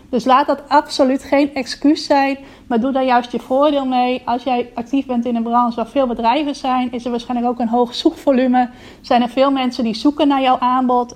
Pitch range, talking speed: 235-260 Hz, 220 wpm